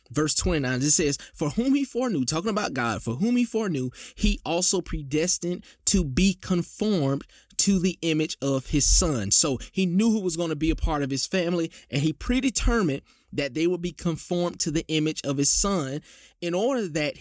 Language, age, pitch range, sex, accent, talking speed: English, 20-39, 140-190 Hz, male, American, 200 wpm